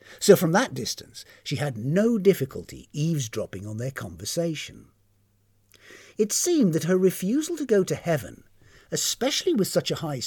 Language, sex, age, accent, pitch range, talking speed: English, male, 50-69, British, 125-190 Hz, 150 wpm